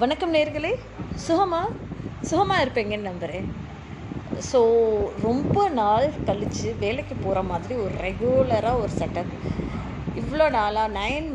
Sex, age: female, 20-39